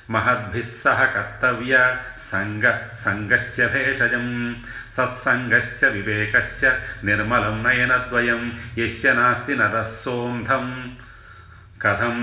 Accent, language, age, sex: native, Telugu, 40-59, male